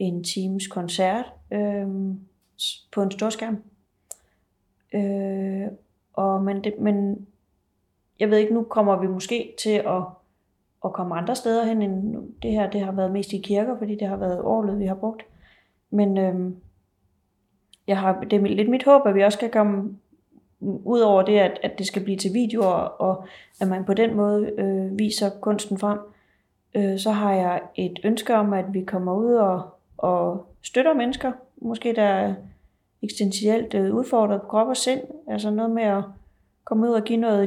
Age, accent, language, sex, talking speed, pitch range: 30-49, native, Danish, female, 175 wpm, 190-215 Hz